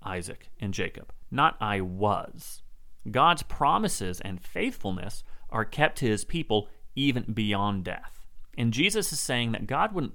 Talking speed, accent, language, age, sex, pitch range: 150 wpm, American, English, 30-49, male, 95-135 Hz